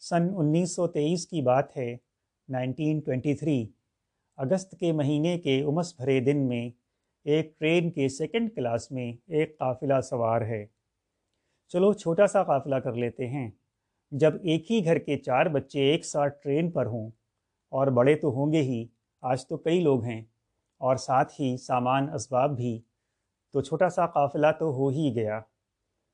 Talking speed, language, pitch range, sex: 165 wpm, Urdu, 115-155 Hz, male